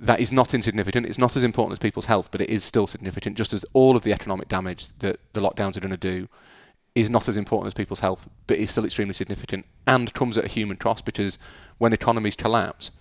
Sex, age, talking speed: male, 30-49, 240 wpm